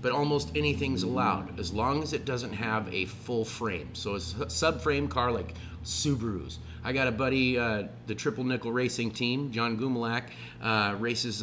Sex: male